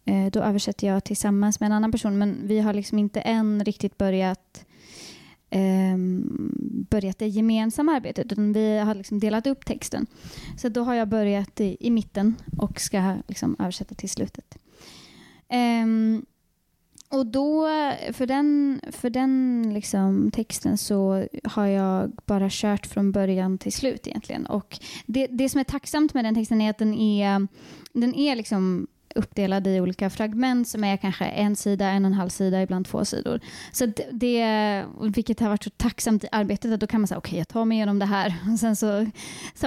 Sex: female